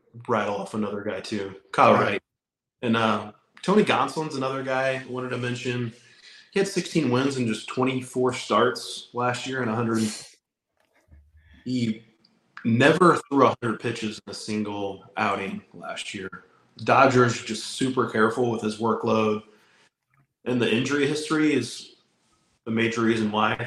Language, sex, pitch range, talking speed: English, male, 110-130 Hz, 145 wpm